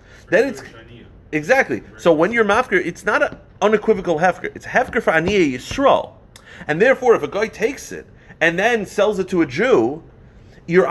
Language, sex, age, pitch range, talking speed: English, male, 30-49, 120-175 Hz, 175 wpm